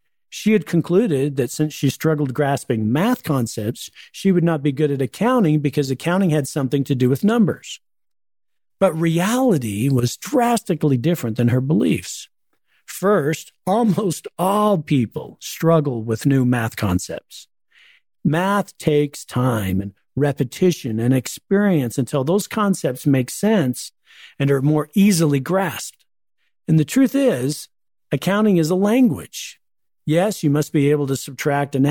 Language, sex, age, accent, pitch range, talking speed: English, male, 50-69, American, 135-185 Hz, 140 wpm